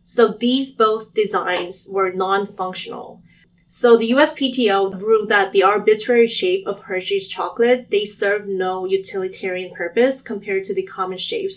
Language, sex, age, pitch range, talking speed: English, female, 20-39, 185-240 Hz, 140 wpm